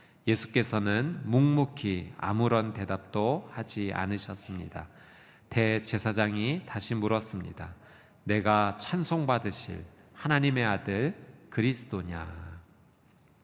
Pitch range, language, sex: 110-145 Hz, Korean, male